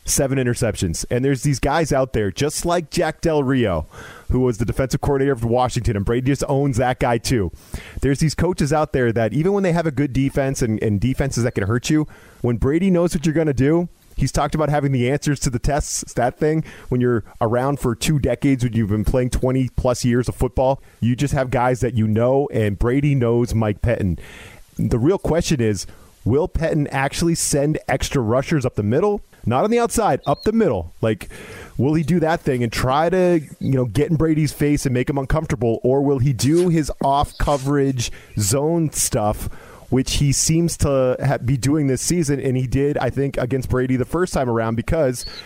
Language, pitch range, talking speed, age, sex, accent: English, 120-150 Hz, 210 wpm, 30-49, male, American